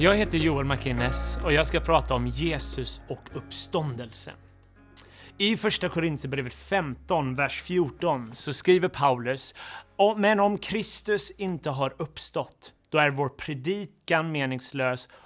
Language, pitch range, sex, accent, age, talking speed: Swedish, 130-180 Hz, male, native, 30-49, 125 wpm